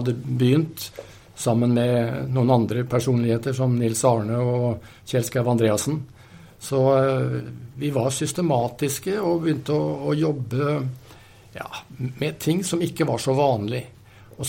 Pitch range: 115-145 Hz